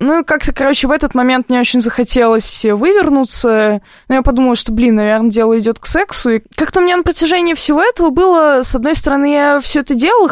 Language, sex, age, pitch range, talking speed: Russian, female, 20-39, 210-265 Hz, 210 wpm